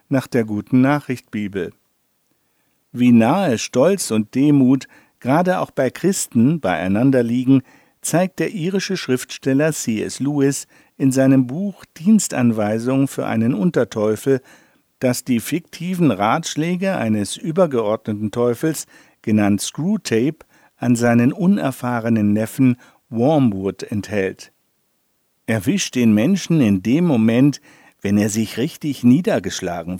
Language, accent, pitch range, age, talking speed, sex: German, German, 110-145 Hz, 50-69, 110 wpm, male